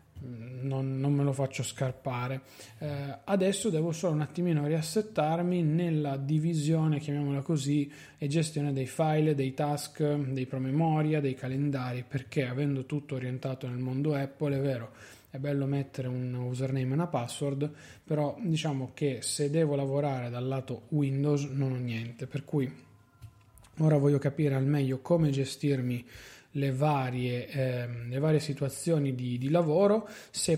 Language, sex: Italian, male